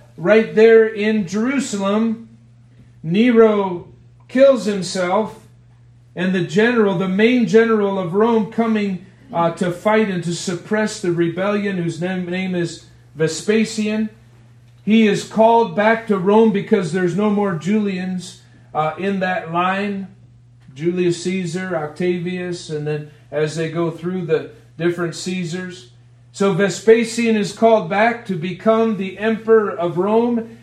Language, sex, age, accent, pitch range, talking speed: English, male, 40-59, American, 170-215 Hz, 130 wpm